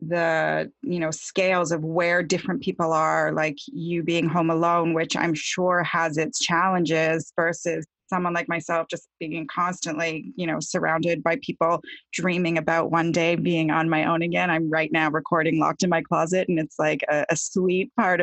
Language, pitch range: English, 170-210 Hz